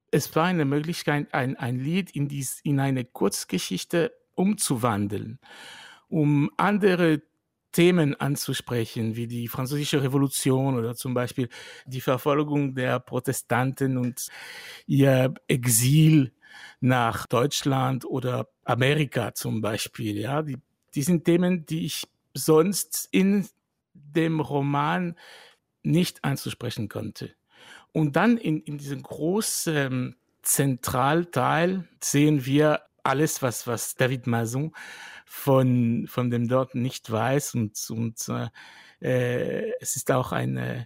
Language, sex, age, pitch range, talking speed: German, male, 60-79, 125-150 Hz, 110 wpm